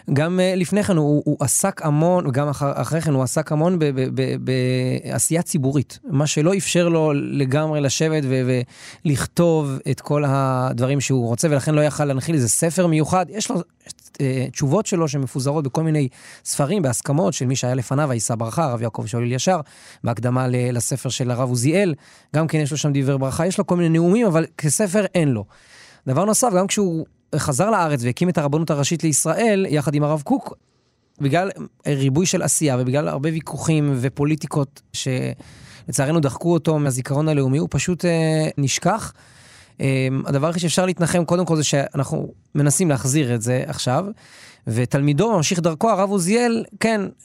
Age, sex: 20-39, male